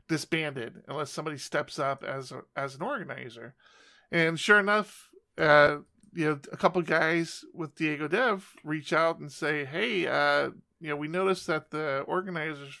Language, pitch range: English, 140-180 Hz